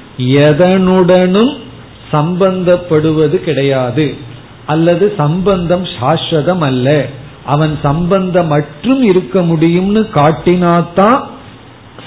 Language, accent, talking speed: Tamil, native, 55 wpm